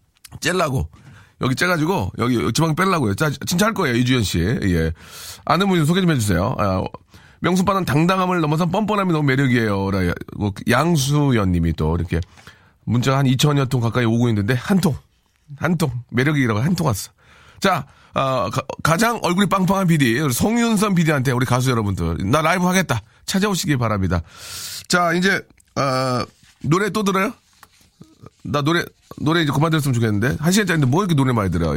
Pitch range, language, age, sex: 110-170 Hz, Korean, 40-59, male